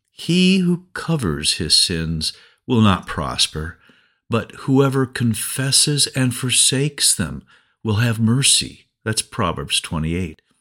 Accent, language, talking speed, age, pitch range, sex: American, English, 115 wpm, 50-69, 90-135 Hz, male